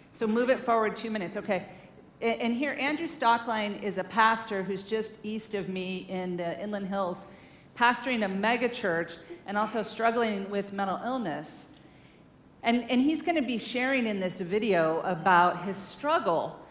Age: 40-59